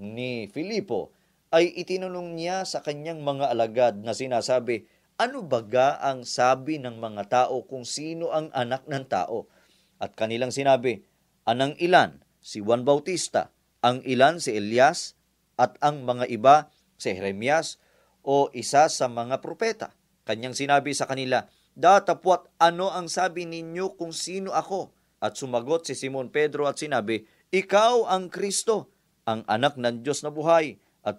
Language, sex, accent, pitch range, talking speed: Filipino, male, native, 125-165 Hz, 145 wpm